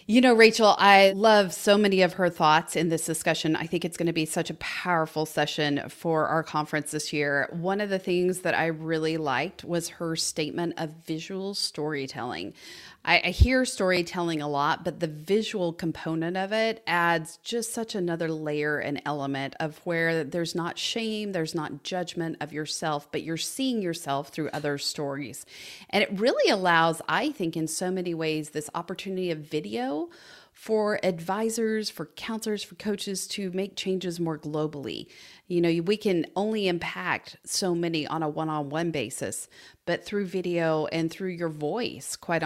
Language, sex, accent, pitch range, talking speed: English, female, American, 155-195 Hz, 170 wpm